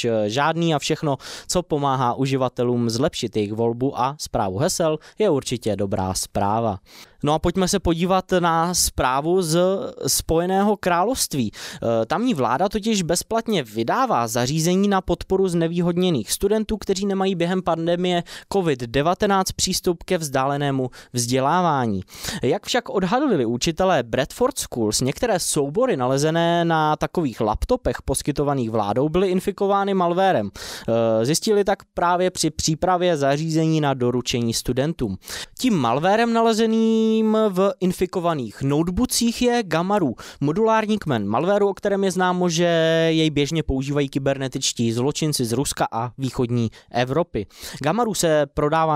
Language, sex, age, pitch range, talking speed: Czech, male, 20-39, 125-180 Hz, 125 wpm